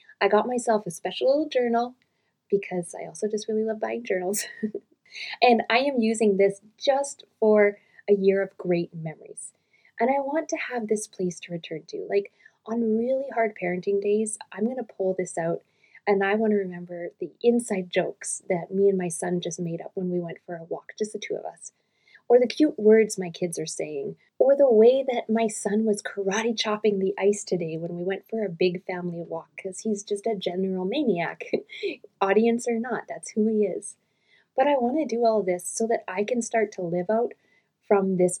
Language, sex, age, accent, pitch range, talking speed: English, female, 20-39, American, 185-230 Hz, 210 wpm